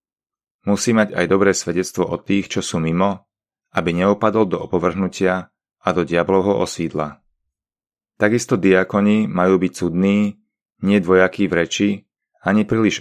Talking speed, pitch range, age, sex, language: 135 wpm, 90-100 Hz, 30-49, male, Slovak